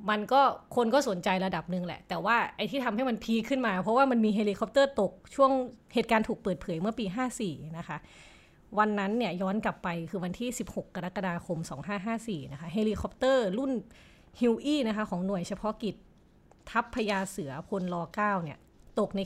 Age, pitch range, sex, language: 20-39, 180-230 Hz, female, Thai